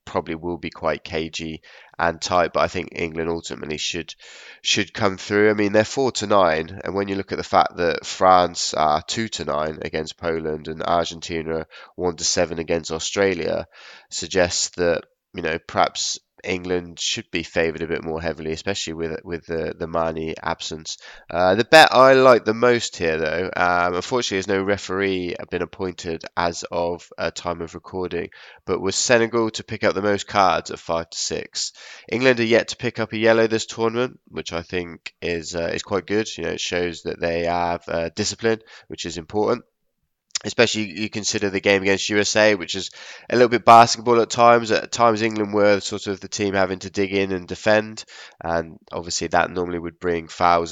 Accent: British